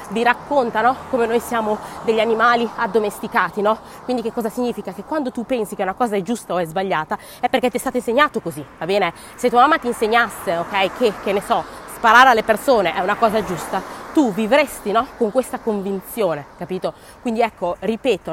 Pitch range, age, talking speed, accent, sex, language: 195-250 Hz, 20-39, 195 wpm, native, female, Italian